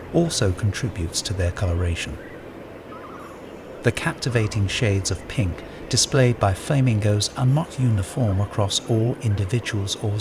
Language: English